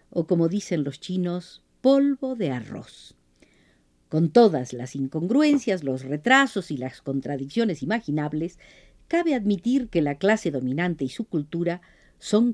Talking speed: 135 wpm